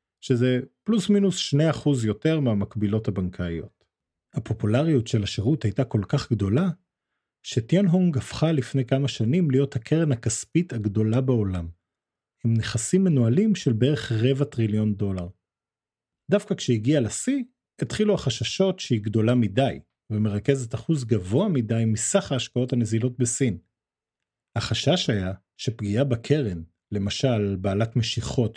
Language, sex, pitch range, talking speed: Hebrew, male, 110-145 Hz, 120 wpm